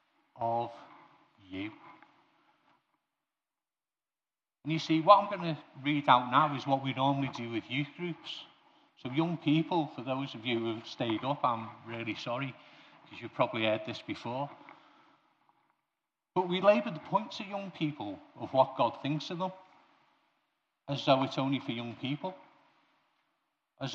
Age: 50-69